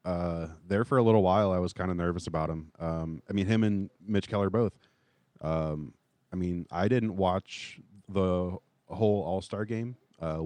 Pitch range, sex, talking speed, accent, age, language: 85-100 Hz, male, 185 wpm, American, 30-49, English